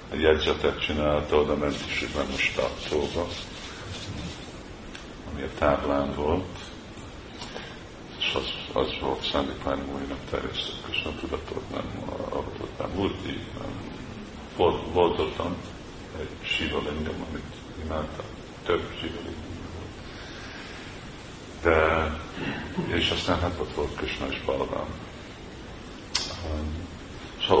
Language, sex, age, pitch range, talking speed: Hungarian, male, 50-69, 75-90 Hz, 110 wpm